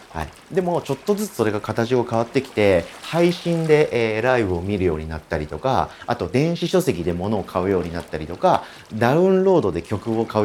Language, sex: Japanese, male